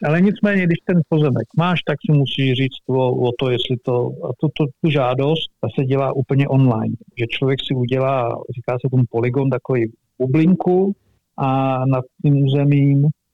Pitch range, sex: 125-140 Hz, male